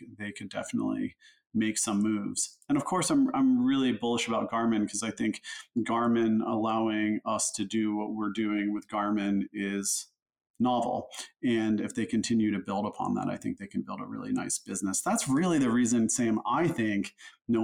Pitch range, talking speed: 105-125 Hz, 185 wpm